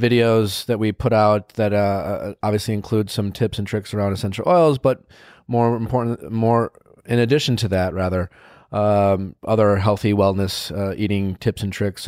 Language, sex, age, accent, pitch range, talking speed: English, male, 30-49, American, 105-140 Hz, 170 wpm